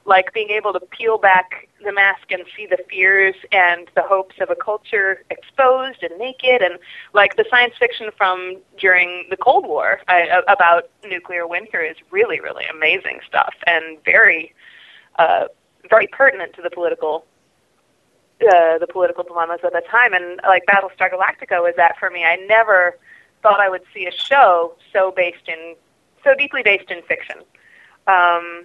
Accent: American